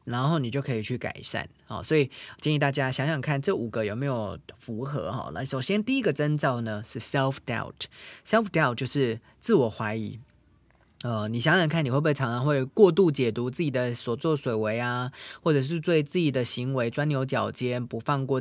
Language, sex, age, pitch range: Chinese, male, 20-39, 115-150 Hz